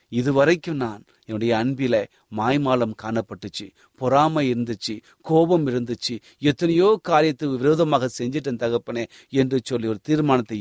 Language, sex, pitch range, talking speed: Tamil, male, 110-150 Hz, 105 wpm